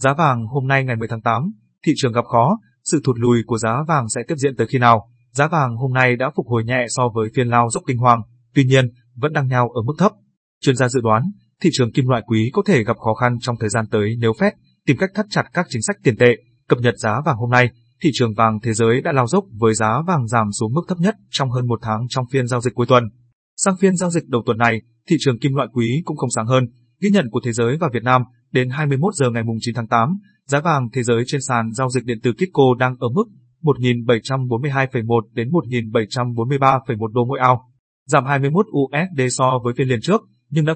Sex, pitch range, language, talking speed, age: male, 120-145 Hz, Vietnamese, 250 wpm, 20-39